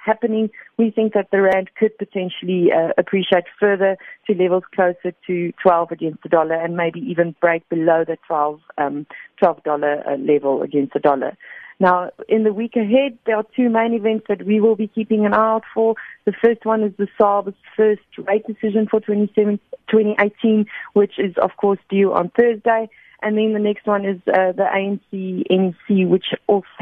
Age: 40-59